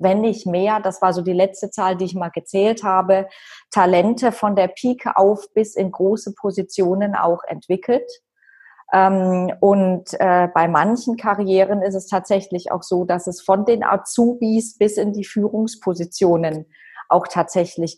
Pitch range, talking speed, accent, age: 170-205 Hz, 150 wpm, German, 20-39